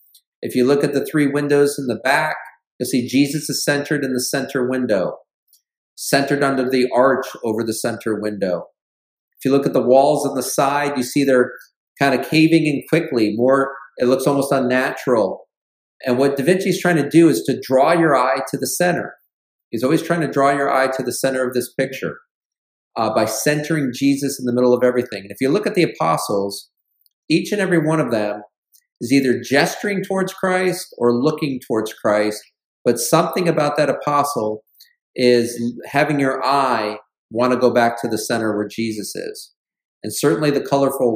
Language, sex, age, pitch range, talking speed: English, male, 40-59, 120-145 Hz, 190 wpm